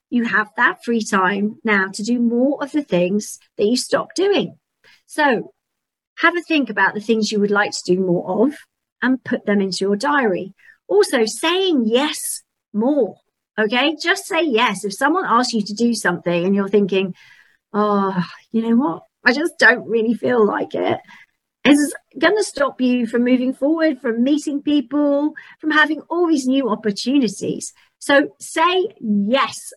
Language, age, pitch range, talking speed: English, 50-69, 210-290 Hz, 170 wpm